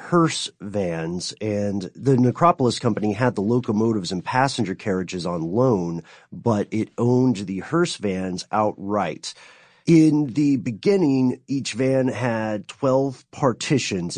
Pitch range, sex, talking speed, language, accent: 100-135 Hz, male, 125 wpm, English, American